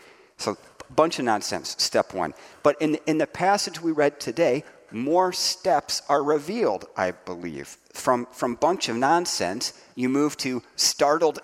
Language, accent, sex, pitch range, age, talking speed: English, American, male, 100-145 Hz, 40-59, 155 wpm